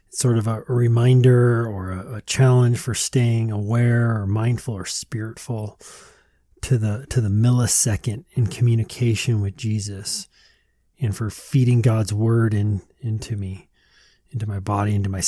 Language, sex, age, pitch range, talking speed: English, male, 30-49, 105-125 Hz, 145 wpm